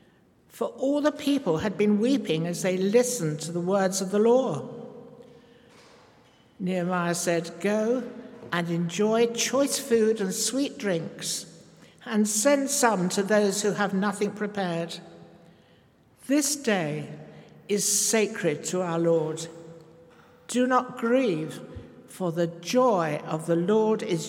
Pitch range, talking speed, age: 165-230 Hz, 130 wpm, 60-79